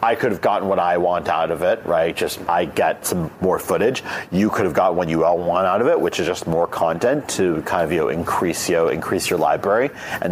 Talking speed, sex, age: 250 wpm, male, 40-59